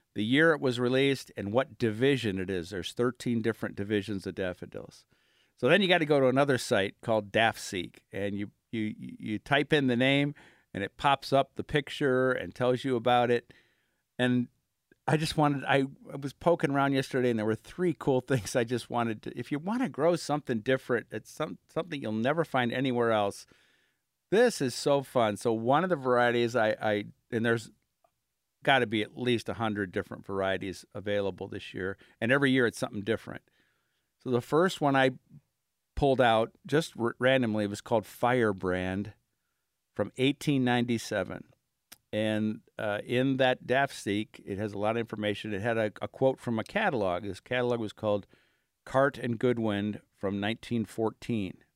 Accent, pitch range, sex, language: American, 105-135 Hz, male, English